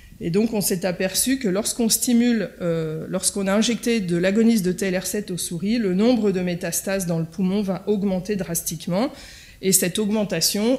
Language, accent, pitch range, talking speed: French, French, 180-225 Hz, 170 wpm